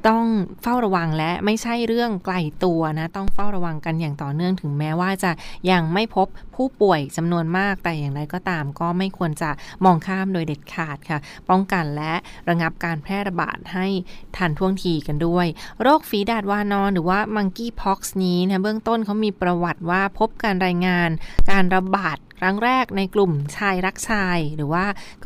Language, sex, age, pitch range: Thai, female, 20-39, 170-210 Hz